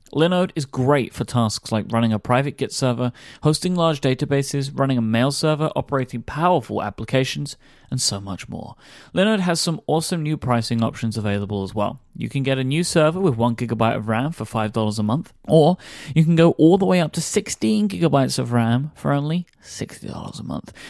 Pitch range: 120-165 Hz